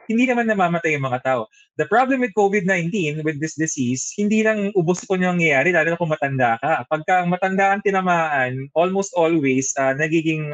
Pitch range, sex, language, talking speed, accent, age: 150-200 Hz, male, English, 175 wpm, Filipino, 20-39